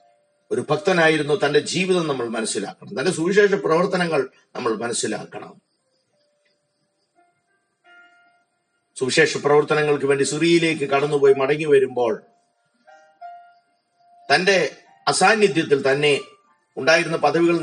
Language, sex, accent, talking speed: Malayalam, male, native, 80 wpm